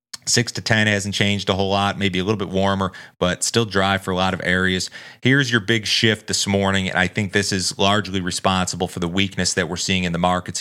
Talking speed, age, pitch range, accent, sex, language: 245 wpm, 30-49, 95-105 Hz, American, male, English